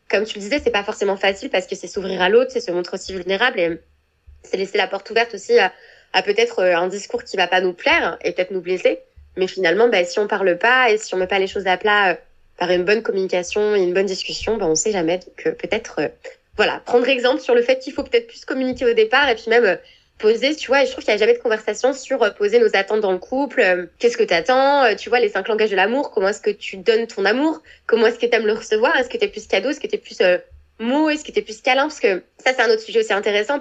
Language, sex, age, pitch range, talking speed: French, female, 20-39, 195-290 Hz, 285 wpm